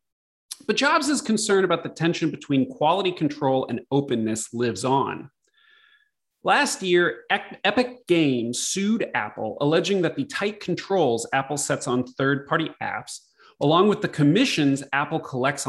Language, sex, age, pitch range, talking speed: English, male, 30-49, 130-195 Hz, 140 wpm